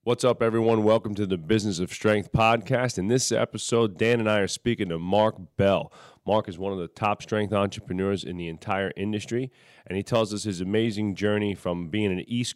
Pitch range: 90-110 Hz